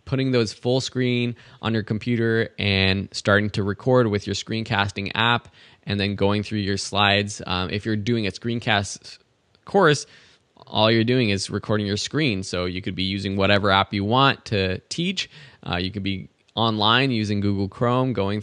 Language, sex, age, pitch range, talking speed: English, male, 20-39, 95-115 Hz, 180 wpm